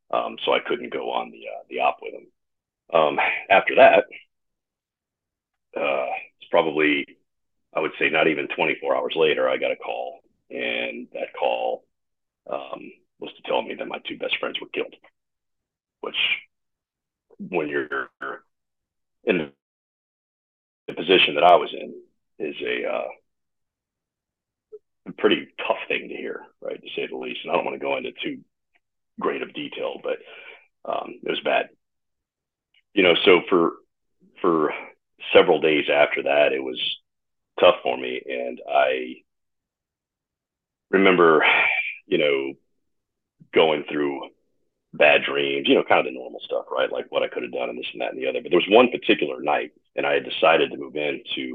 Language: English